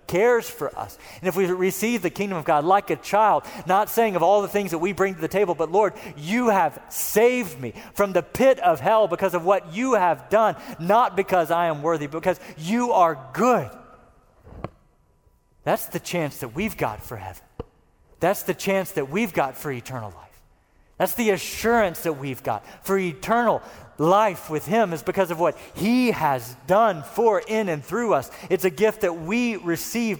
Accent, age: American, 40-59